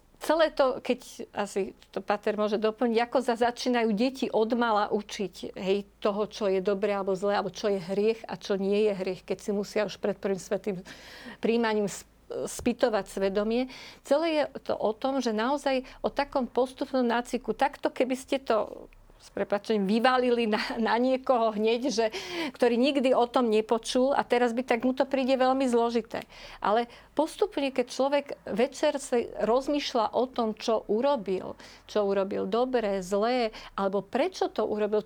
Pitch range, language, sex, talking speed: 210-260 Hz, Slovak, female, 160 wpm